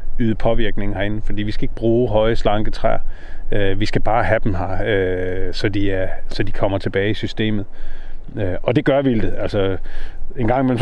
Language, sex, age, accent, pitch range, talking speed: Danish, male, 30-49, native, 100-130 Hz, 190 wpm